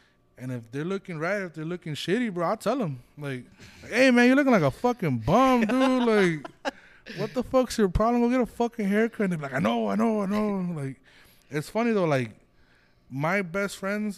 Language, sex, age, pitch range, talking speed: English, male, 20-39, 120-165 Hz, 225 wpm